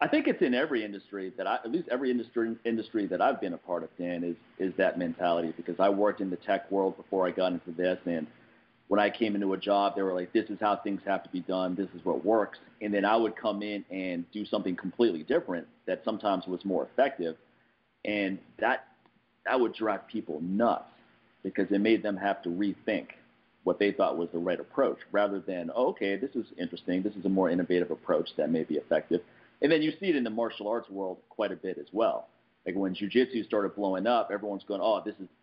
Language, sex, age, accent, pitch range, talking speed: English, male, 50-69, American, 95-110 Hz, 235 wpm